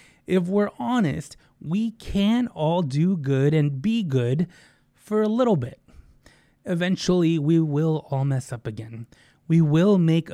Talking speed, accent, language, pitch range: 145 wpm, American, English, 130-170 Hz